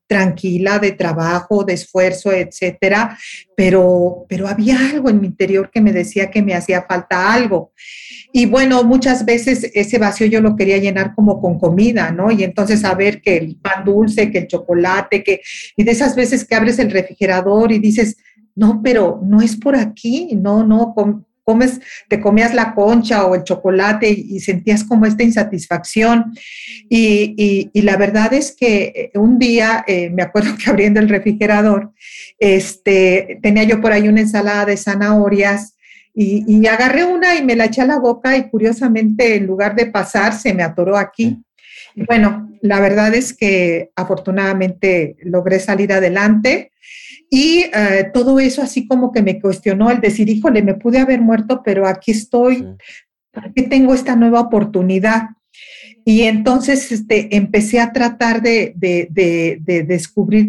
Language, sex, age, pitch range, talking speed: Spanish, female, 40-59, 195-230 Hz, 165 wpm